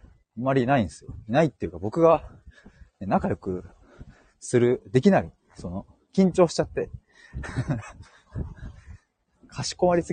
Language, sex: Japanese, male